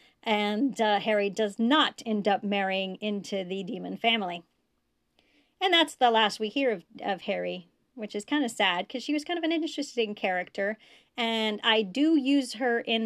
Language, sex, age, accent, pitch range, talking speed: English, female, 40-59, American, 190-235 Hz, 185 wpm